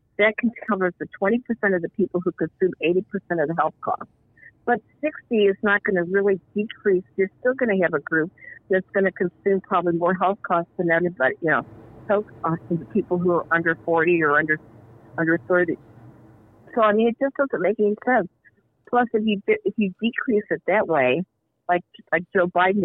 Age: 50-69